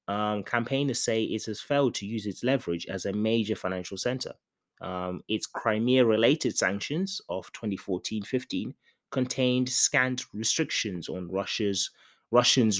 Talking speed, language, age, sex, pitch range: 120 wpm, English, 20-39, male, 100-135 Hz